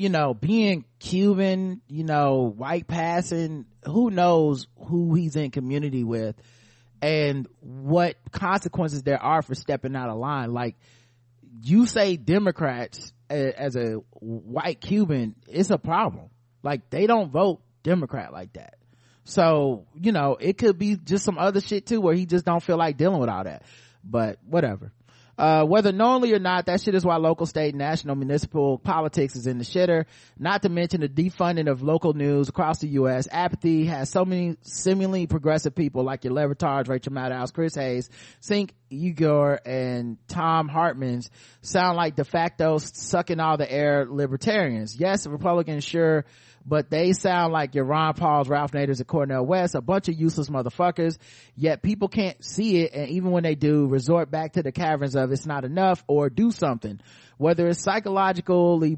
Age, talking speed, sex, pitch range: 30-49, 170 wpm, male, 135-175 Hz